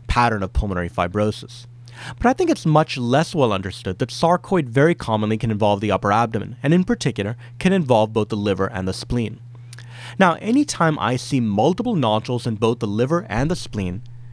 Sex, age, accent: male, 30-49, American